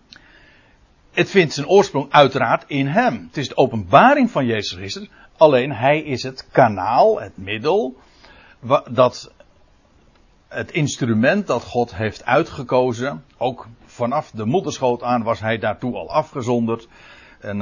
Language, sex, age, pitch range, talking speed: Dutch, male, 60-79, 115-160 Hz, 135 wpm